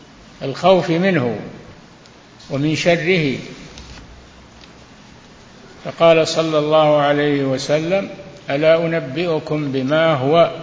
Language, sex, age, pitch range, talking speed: Arabic, male, 60-79, 135-165 Hz, 75 wpm